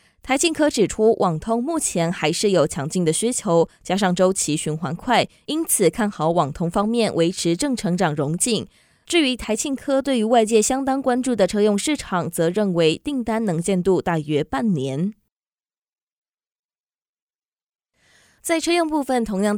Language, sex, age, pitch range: Chinese, female, 20-39, 175-245 Hz